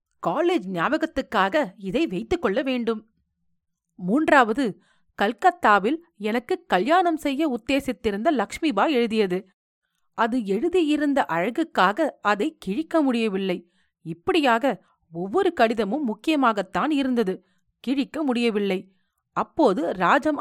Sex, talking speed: female, 85 wpm